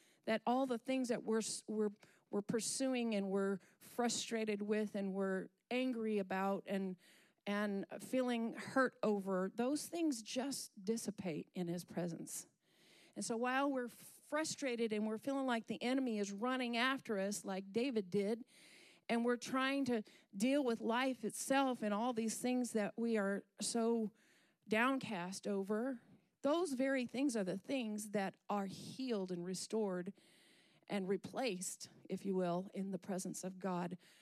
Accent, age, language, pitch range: American, 50-69, English, 190-240 Hz